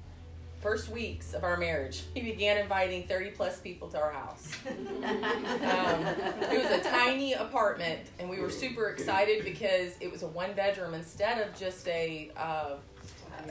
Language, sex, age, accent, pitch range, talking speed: English, female, 30-49, American, 160-200 Hz, 160 wpm